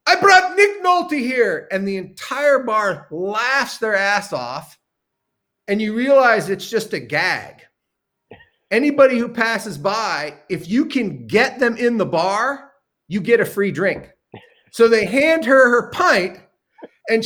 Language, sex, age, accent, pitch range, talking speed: English, male, 40-59, American, 195-275 Hz, 155 wpm